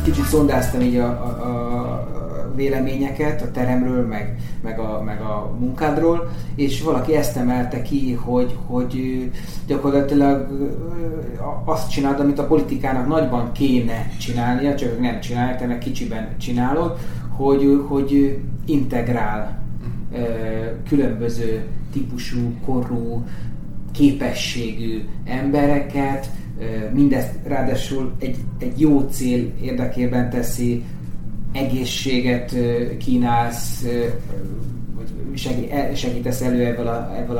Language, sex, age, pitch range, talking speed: Hungarian, male, 30-49, 120-140 Hz, 90 wpm